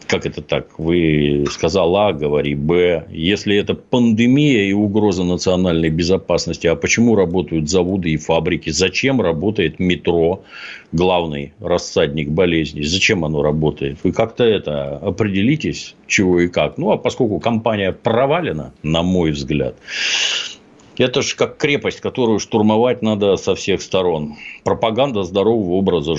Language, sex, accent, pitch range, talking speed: Russian, male, native, 80-105 Hz, 135 wpm